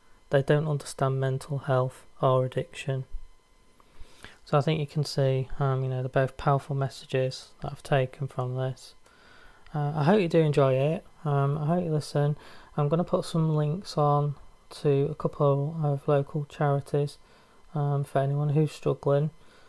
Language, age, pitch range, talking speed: English, 20-39, 130-150 Hz, 165 wpm